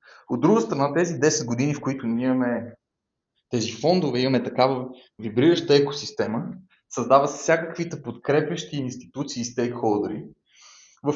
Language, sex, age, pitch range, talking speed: Bulgarian, male, 20-39, 120-145 Hz, 130 wpm